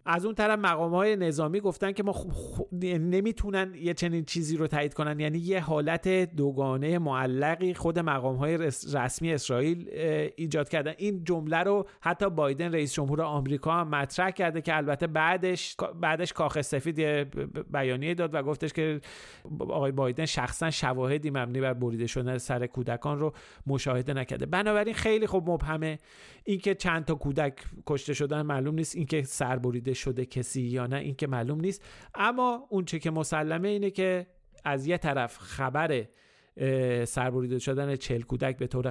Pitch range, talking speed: 130-170 Hz, 155 wpm